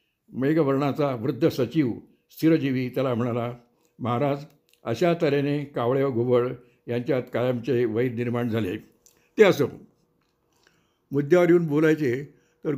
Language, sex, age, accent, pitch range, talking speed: Marathi, male, 60-79, native, 125-155 Hz, 110 wpm